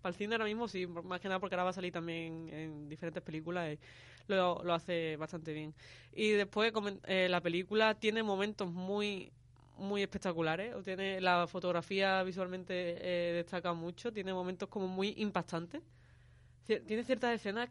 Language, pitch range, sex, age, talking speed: Spanish, 175-215 Hz, female, 20-39, 165 wpm